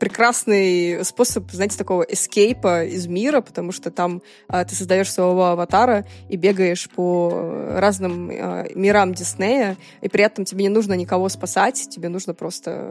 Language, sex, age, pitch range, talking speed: Russian, female, 20-39, 180-215 Hz, 155 wpm